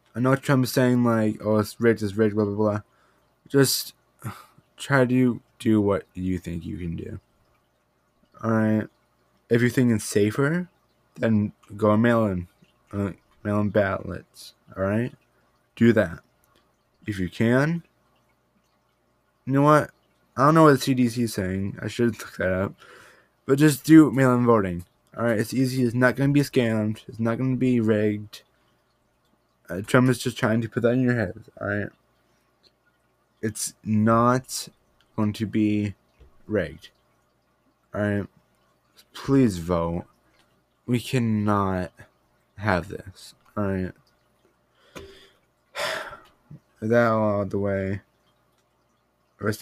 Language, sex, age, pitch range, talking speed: English, male, 20-39, 85-120 Hz, 135 wpm